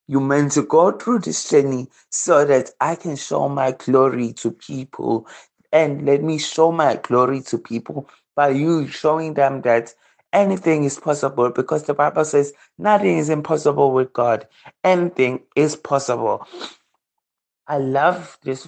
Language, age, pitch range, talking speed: English, 30-49, 125-155 Hz, 150 wpm